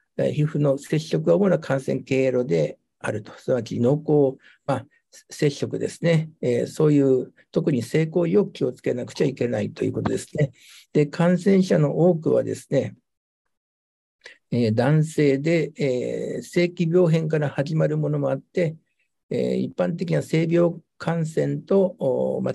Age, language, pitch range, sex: 60-79, Japanese, 135-165 Hz, male